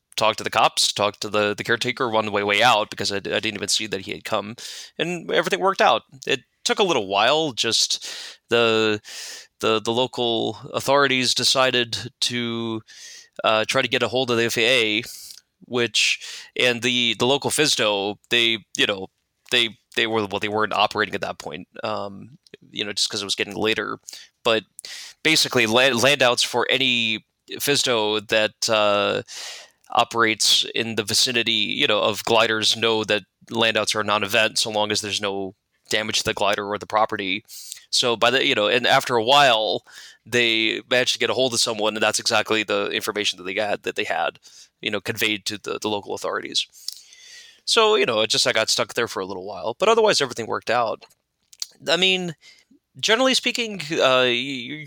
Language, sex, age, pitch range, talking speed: English, male, 20-39, 110-135 Hz, 190 wpm